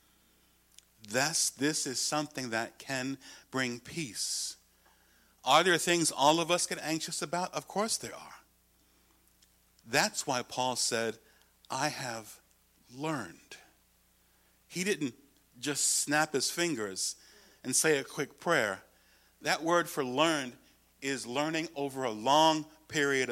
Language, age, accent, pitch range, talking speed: English, 50-69, American, 110-155 Hz, 125 wpm